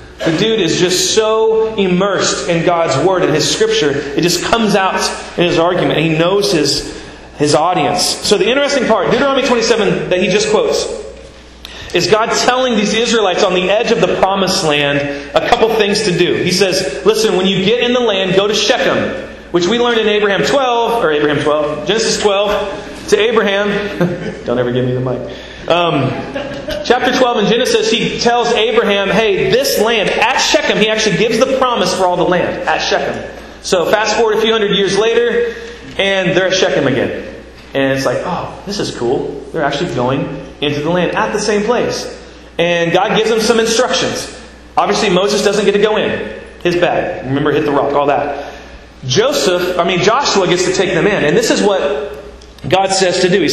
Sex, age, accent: male, 30-49, American